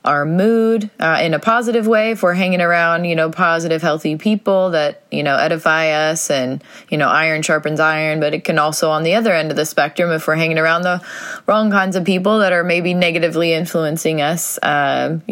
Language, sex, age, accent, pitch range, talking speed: English, female, 20-39, American, 145-180 Hz, 210 wpm